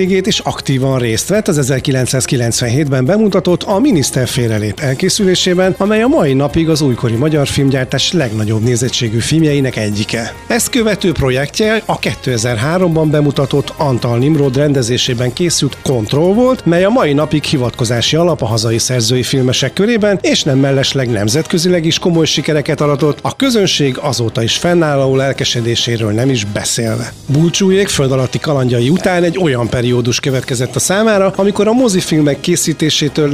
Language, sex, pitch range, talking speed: Hungarian, male, 125-180 Hz, 135 wpm